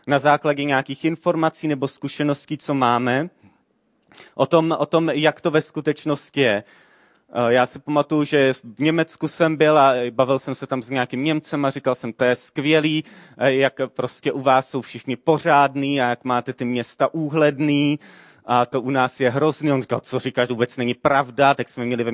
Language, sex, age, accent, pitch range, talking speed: Czech, male, 30-49, native, 125-150 Hz, 185 wpm